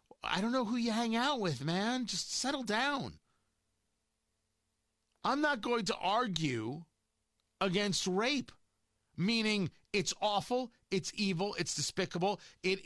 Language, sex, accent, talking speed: English, male, American, 125 wpm